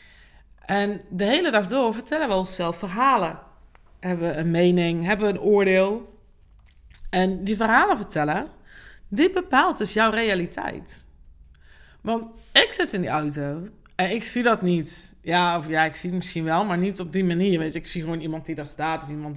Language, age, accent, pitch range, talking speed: Dutch, 20-39, Dutch, 170-235 Hz, 190 wpm